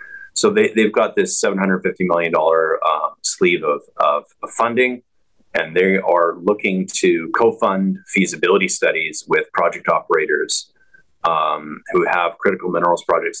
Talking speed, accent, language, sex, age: 130 wpm, American, English, male, 30-49